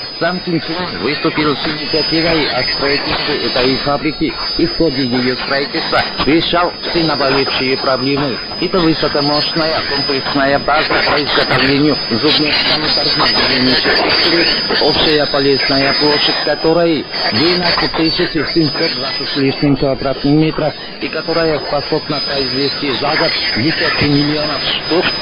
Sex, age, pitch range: male, 50-69, 140-165 Hz